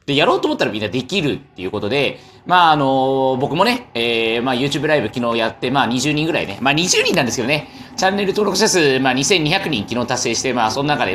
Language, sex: Japanese, male